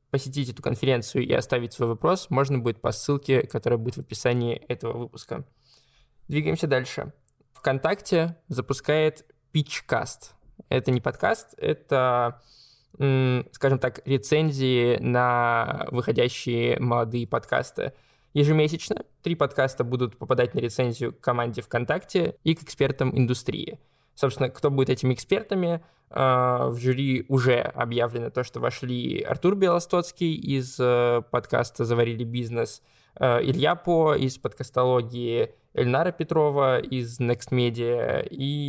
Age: 20-39